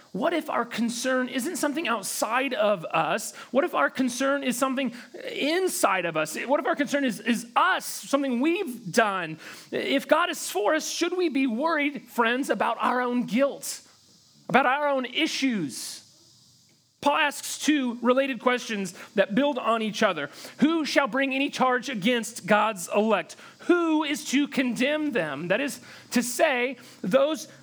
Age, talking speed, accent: 30-49, 160 wpm, American